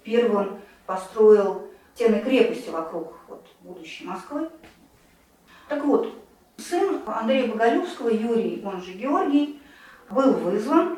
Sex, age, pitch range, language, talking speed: female, 40-59, 205-270 Hz, Russian, 105 wpm